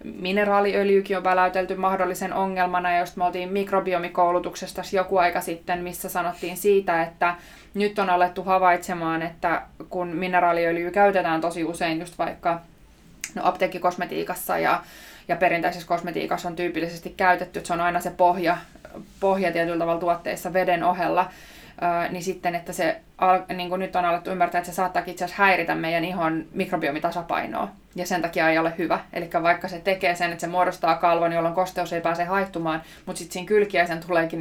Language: Finnish